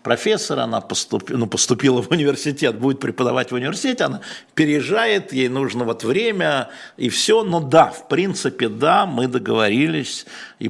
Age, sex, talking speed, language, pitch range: 50-69, male, 150 wpm, Russian, 110-150 Hz